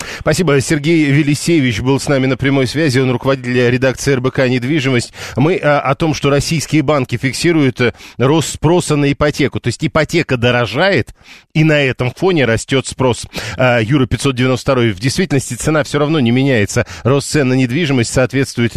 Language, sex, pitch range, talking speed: Russian, male, 120-150 Hz, 155 wpm